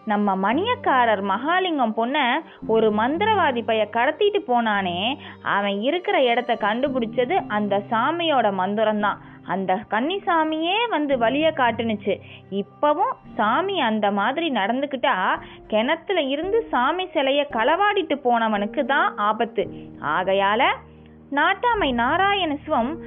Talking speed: 95 wpm